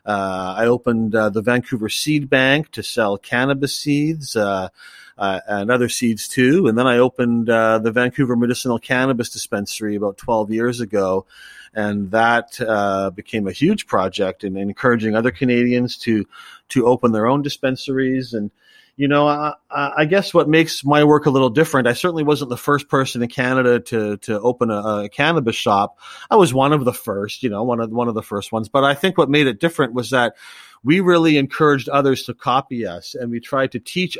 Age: 30-49